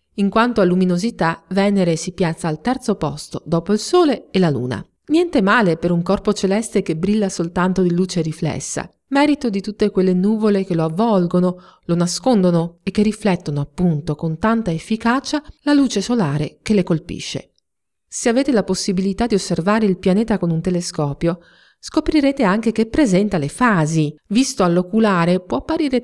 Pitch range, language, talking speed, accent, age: 175-235 Hz, Italian, 165 wpm, native, 40-59